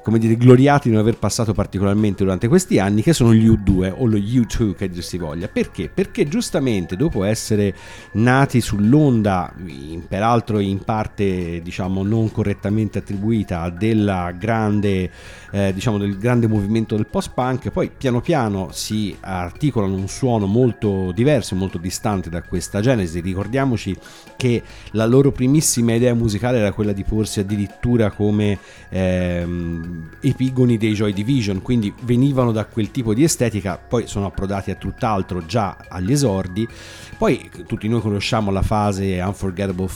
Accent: native